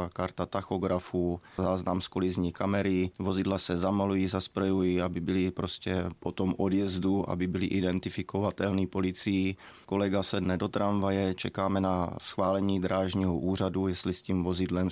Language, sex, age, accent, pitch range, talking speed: Czech, male, 20-39, native, 90-95 Hz, 135 wpm